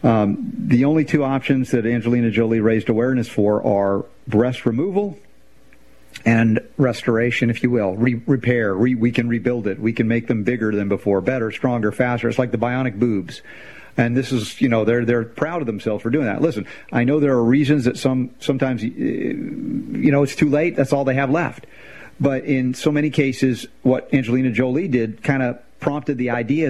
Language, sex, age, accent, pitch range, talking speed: English, male, 50-69, American, 120-145 Hz, 195 wpm